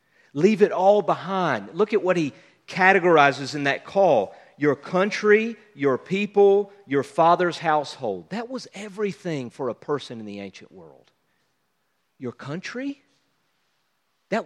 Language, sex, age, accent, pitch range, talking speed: English, male, 50-69, American, 165-230 Hz, 135 wpm